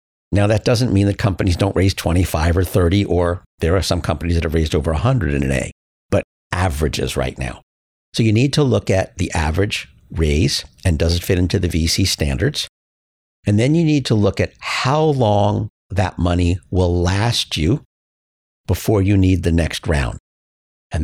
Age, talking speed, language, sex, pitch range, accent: 50-69, 190 wpm, English, male, 80-100 Hz, American